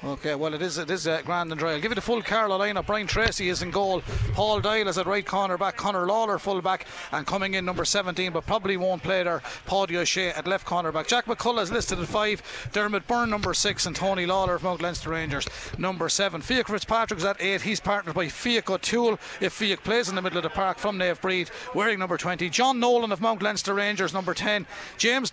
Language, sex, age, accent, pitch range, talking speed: English, male, 30-49, Irish, 180-220 Hz, 240 wpm